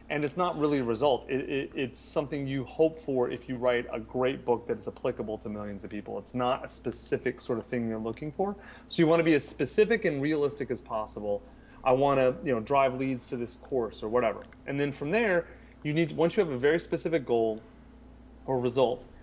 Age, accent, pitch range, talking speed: 30-49, American, 120-150 Hz, 225 wpm